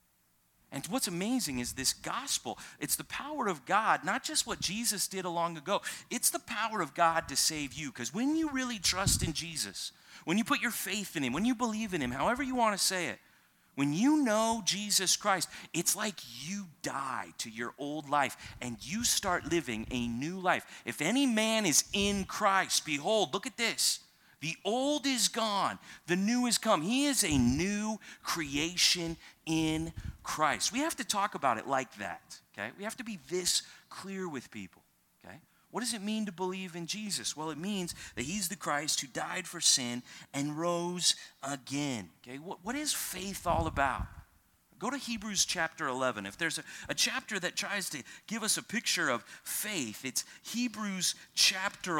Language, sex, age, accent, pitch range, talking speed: English, male, 30-49, American, 145-220 Hz, 190 wpm